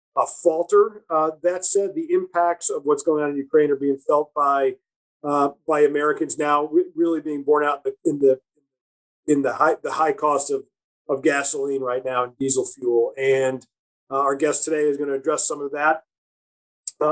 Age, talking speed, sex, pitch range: 40-59, 195 wpm, male, 145-205 Hz